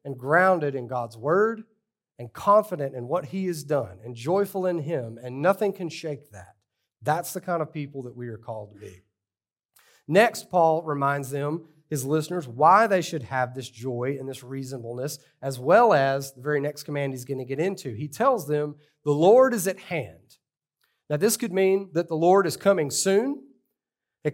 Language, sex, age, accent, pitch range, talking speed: English, male, 40-59, American, 130-185 Hz, 190 wpm